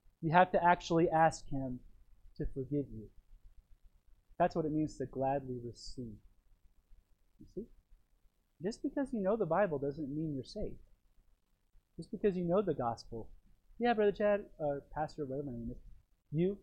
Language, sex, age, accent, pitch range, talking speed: English, male, 30-49, American, 125-175 Hz, 160 wpm